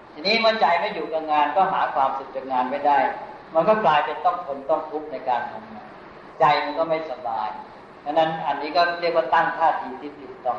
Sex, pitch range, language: female, 140-175 Hz, Thai